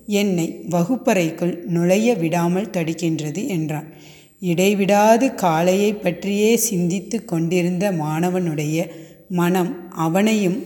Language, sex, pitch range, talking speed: Tamil, female, 165-195 Hz, 80 wpm